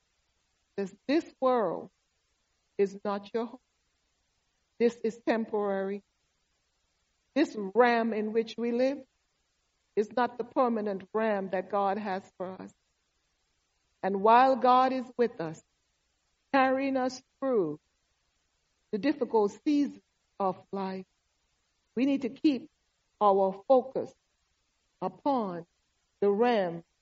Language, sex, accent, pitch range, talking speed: English, female, American, 185-245 Hz, 105 wpm